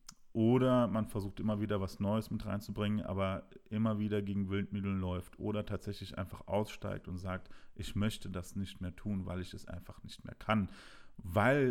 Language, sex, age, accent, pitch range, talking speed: German, male, 40-59, German, 95-115 Hz, 180 wpm